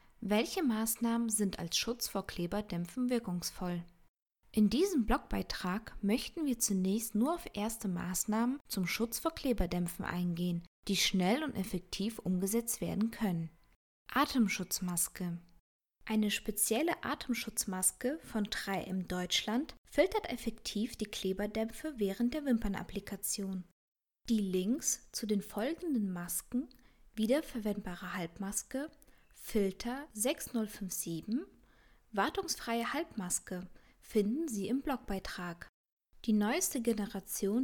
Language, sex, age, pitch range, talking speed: German, female, 20-39, 185-245 Hz, 100 wpm